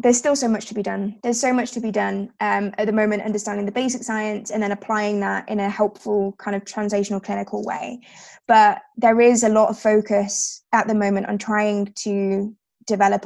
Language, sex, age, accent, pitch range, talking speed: English, female, 20-39, British, 200-225 Hz, 215 wpm